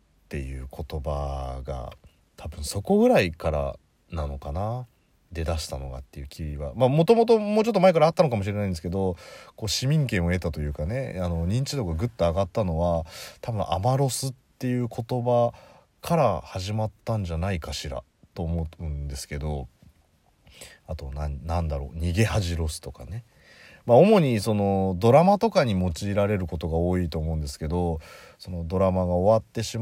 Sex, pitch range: male, 80-115 Hz